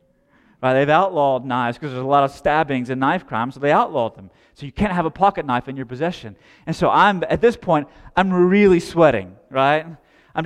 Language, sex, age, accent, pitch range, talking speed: English, male, 30-49, American, 130-170 Hz, 220 wpm